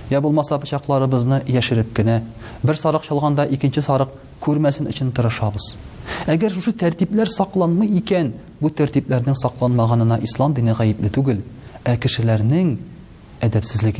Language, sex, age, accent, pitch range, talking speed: Russian, male, 40-59, Turkish, 115-150 Hz, 145 wpm